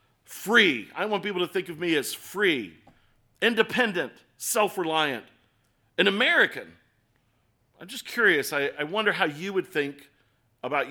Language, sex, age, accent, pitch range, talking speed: English, male, 40-59, American, 125-175 Hz, 140 wpm